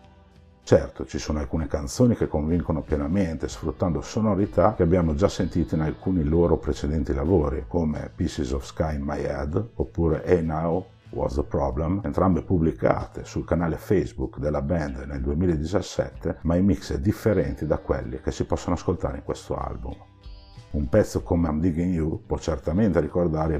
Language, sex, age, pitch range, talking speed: Italian, male, 50-69, 75-95 Hz, 165 wpm